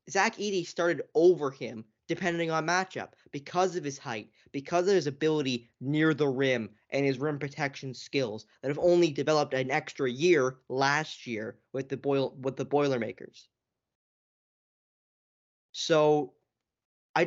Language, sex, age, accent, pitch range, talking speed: English, male, 10-29, American, 135-180 Hz, 135 wpm